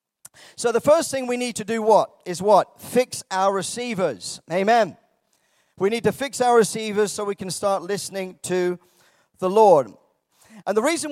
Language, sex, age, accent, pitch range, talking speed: English, male, 40-59, British, 185-230 Hz, 175 wpm